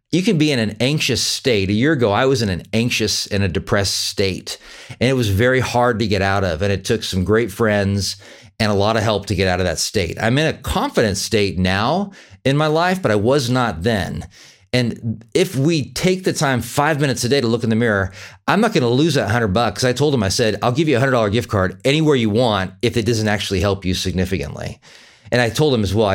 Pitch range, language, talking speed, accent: 100-130 Hz, English, 250 wpm, American